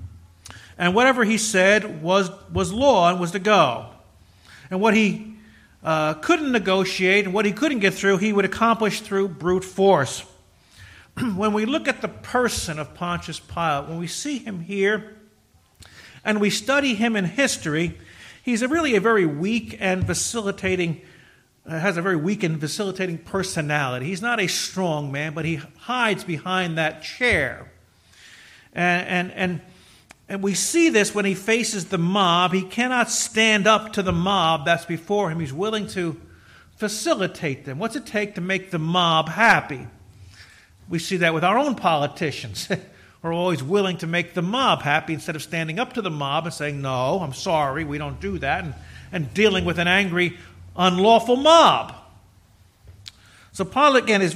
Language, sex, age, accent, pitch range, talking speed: English, male, 50-69, American, 155-215 Hz, 170 wpm